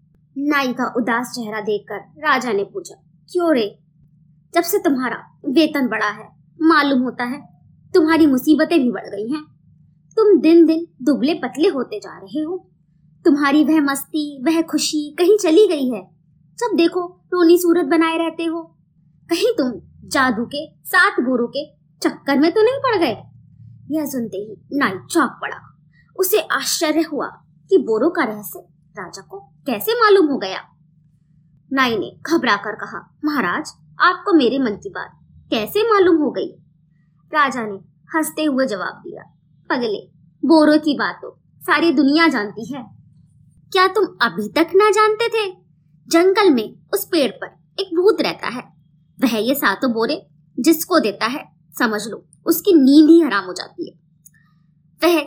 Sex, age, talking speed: male, 20-39, 155 wpm